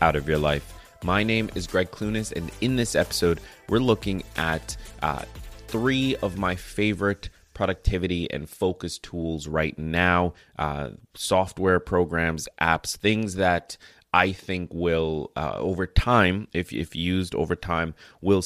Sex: male